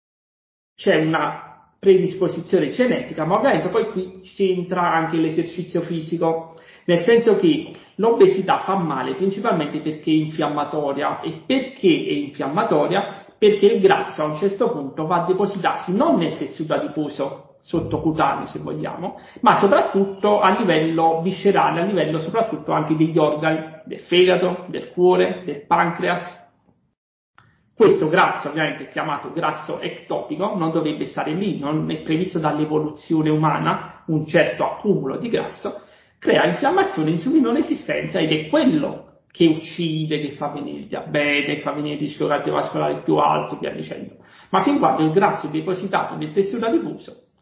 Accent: native